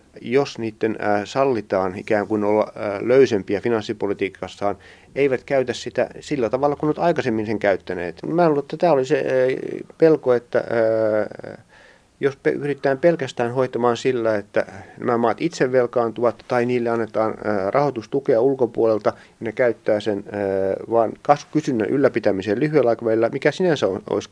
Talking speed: 130 wpm